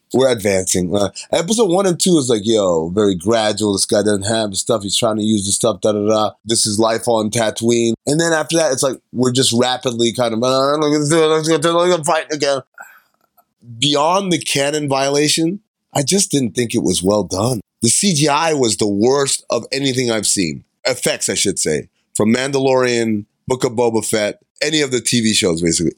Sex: male